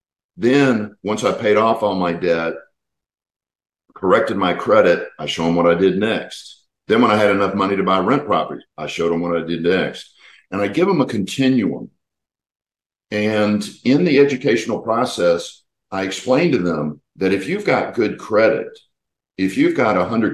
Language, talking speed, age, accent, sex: English, 175 wpm, 50-69, American, male